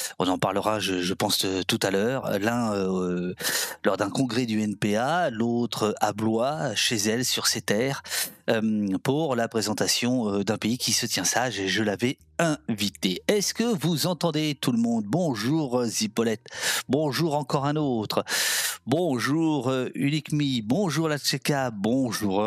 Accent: French